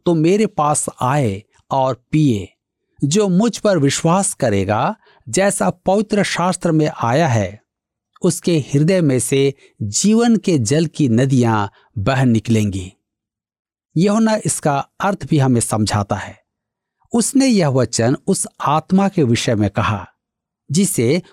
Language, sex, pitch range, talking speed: Hindi, male, 120-190 Hz, 125 wpm